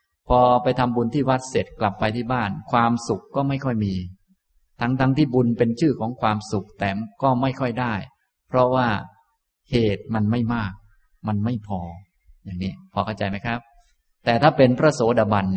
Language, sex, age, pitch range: Thai, male, 20-39, 100-130 Hz